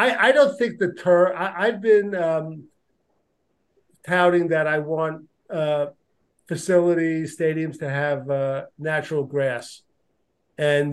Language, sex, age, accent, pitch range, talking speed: English, male, 50-69, American, 145-170 Hz, 125 wpm